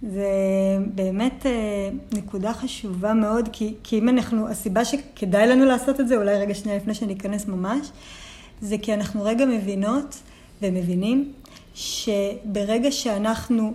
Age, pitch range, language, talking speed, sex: 30-49, 205-235 Hz, Hebrew, 125 wpm, female